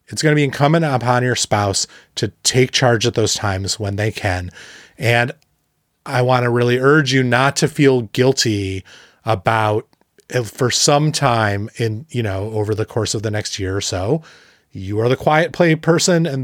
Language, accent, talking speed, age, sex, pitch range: English, American, 185 wpm, 30-49, male, 105-130 Hz